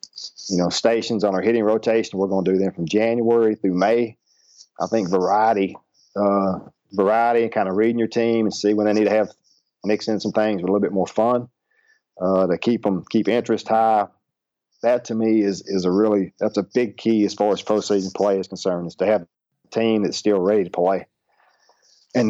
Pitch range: 95-110 Hz